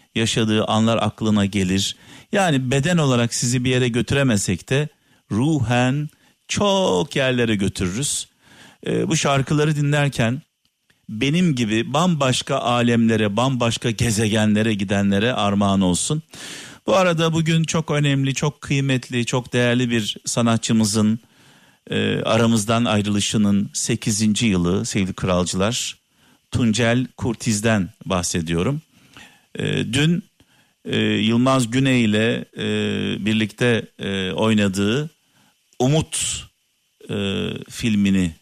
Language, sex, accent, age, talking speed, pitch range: Turkish, male, native, 50-69, 95 wpm, 100-130 Hz